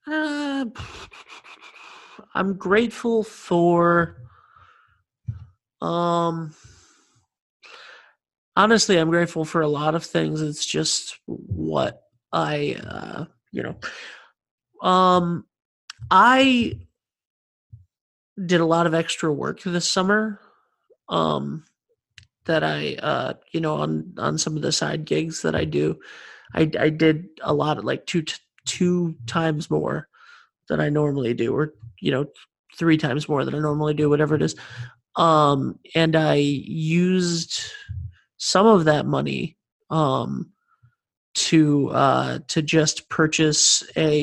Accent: American